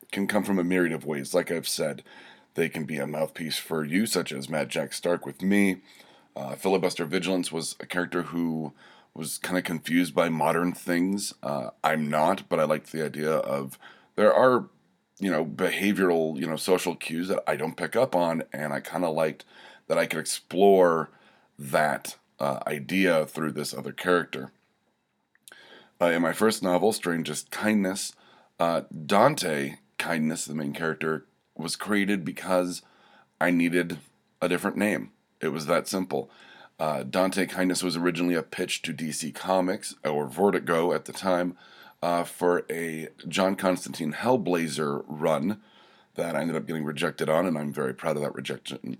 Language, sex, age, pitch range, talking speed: English, male, 30-49, 80-95 Hz, 170 wpm